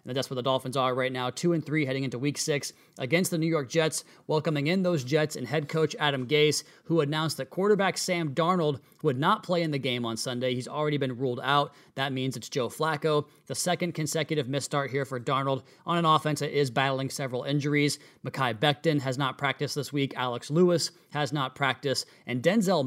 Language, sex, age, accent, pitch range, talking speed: English, male, 30-49, American, 135-155 Hz, 220 wpm